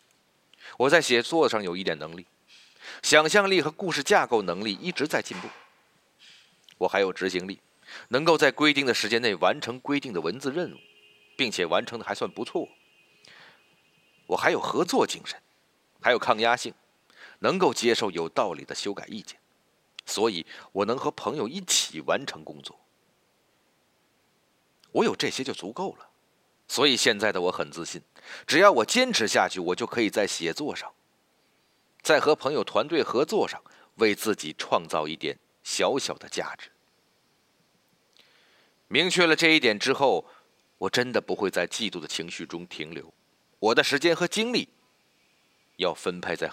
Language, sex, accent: Chinese, male, native